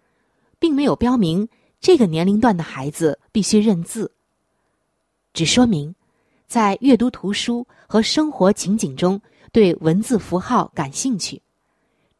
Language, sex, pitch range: Chinese, female, 165-240 Hz